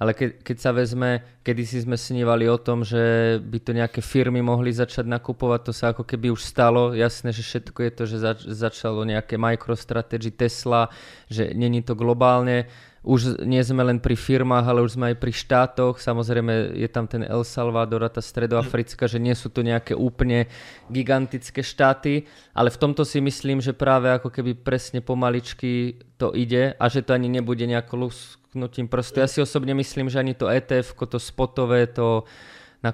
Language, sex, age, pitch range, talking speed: Slovak, male, 20-39, 120-130 Hz, 180 wpm